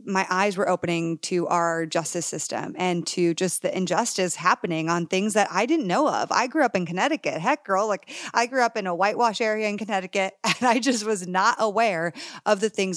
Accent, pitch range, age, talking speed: American, 180-225 Hz, 30-49, 215 wpm